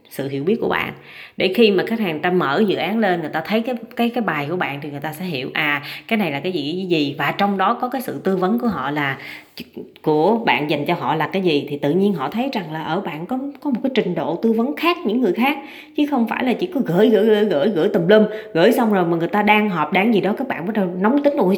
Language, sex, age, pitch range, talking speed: Vietnamese, female, 20-39, 170-235 Hz, 305 wpm